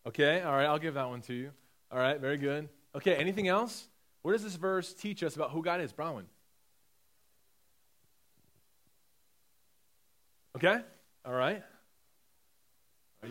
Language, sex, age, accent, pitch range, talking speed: English, male, 30-49, American, 135-200 Hz, 140 wpm